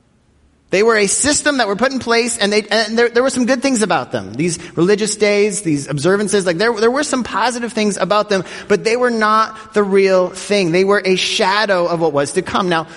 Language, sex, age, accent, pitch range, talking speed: English, male, 30-49, American, 175-230 Hz, 235 wpm